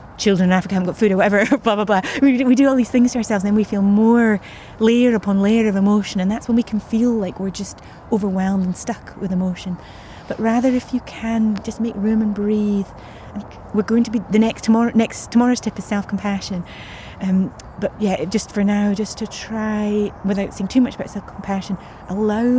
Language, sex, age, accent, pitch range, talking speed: English, female, 30-49, British, 195-220 Hz, 220 wpm